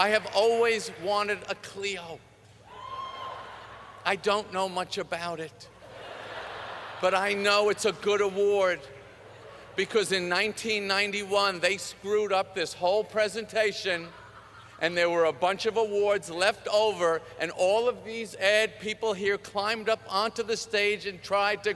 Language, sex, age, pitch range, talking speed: English, male, 50-69, 190-235 Hz, 145 wpm